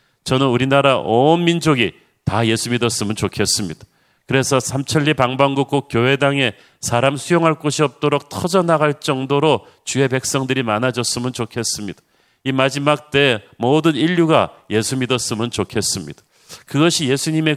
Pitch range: 115-150 Hz